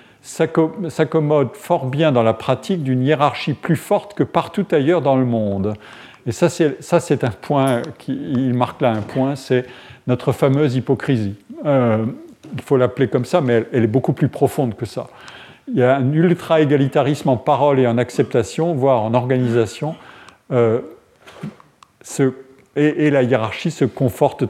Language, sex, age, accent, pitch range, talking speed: French, male, 50-69, French, 115-145 Hz, 170 wpm